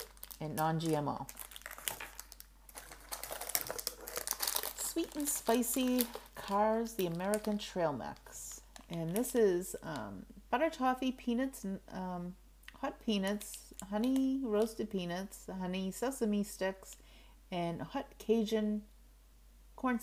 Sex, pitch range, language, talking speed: female, 160-245 Hz, English, 90 wpm